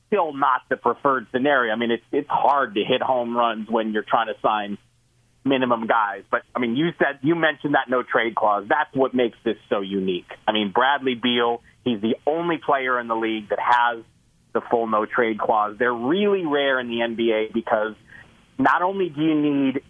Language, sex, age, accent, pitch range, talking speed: English, male, 40-59, American, 115-140 Hz, 205 wpm